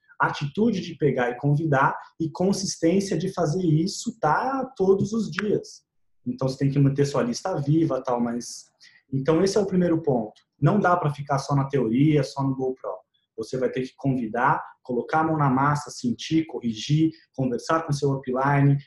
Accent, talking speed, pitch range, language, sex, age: Brazilian, 180 wpm, 135-180 Hz, Portuguese, male, 20-39